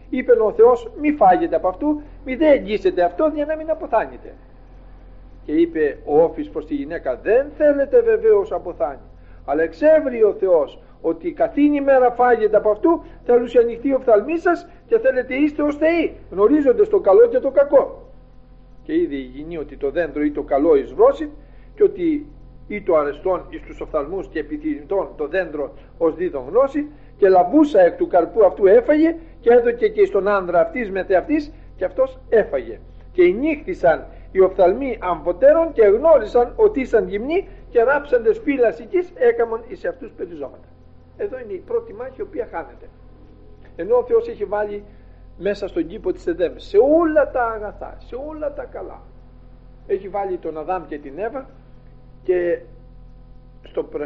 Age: 50-69